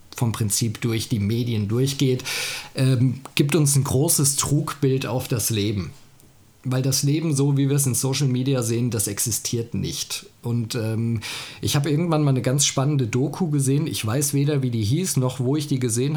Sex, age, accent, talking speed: male, 40-59, German, 190 wpm